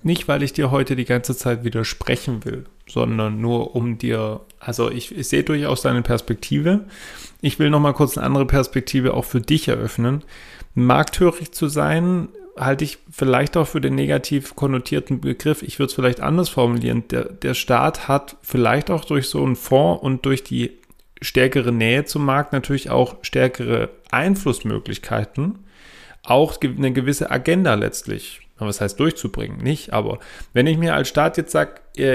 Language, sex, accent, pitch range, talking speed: German, male, German, 120-145 Hz, 165 wpm